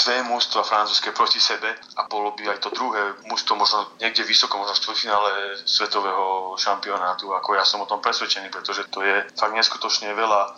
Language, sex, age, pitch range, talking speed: Slovak, male, 30-49, 100-110 Hz, 180 wpm